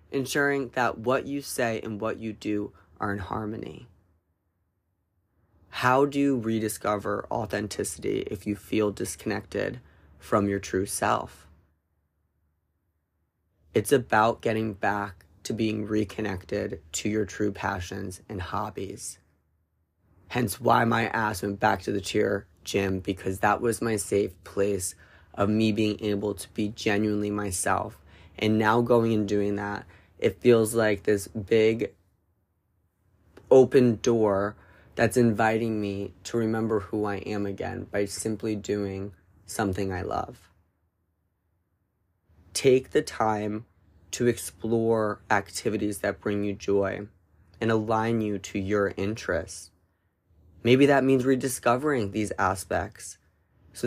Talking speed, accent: 125 wpm, American